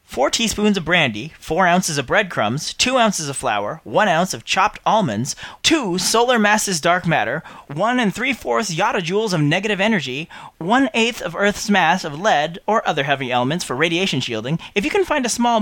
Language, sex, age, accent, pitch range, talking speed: English, male, 30-49, American, 160-225 Hz, 185 wpm